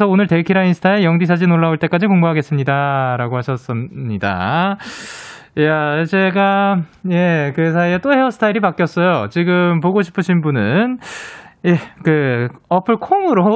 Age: 20-39